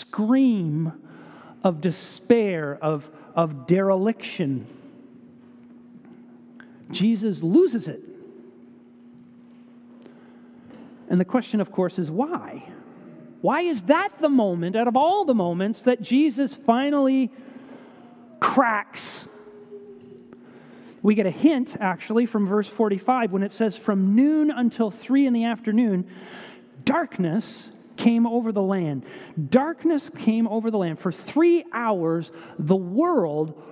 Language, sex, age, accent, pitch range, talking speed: English, male, 40-59, American, 210-275 Hz, 110 wpm